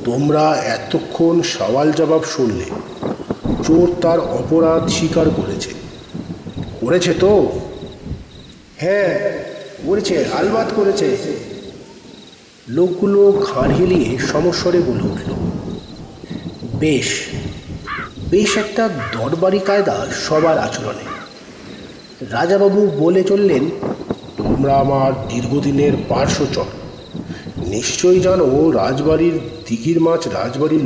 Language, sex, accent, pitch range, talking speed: Bengali, male, native, 130-175 Hz, 40 wpm